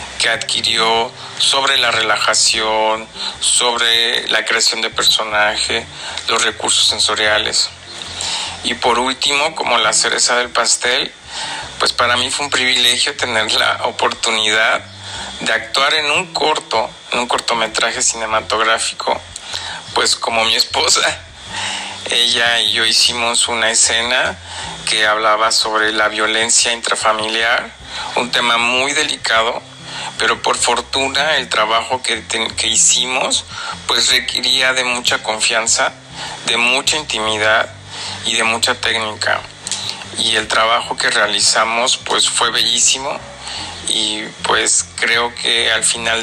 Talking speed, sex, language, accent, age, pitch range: 120 wpm, male, Spanish, Mexican, 50-69, 110-120 Hz